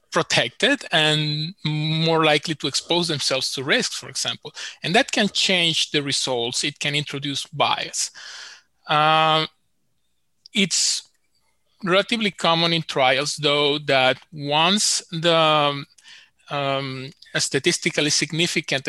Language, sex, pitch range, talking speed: English, male, 135-160 Hz, 110 wpm